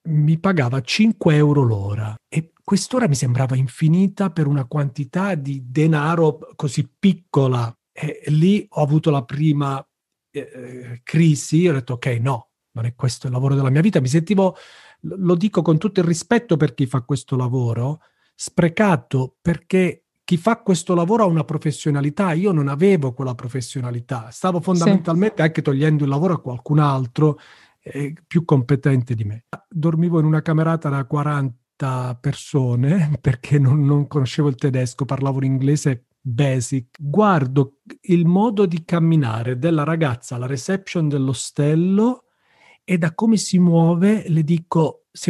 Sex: male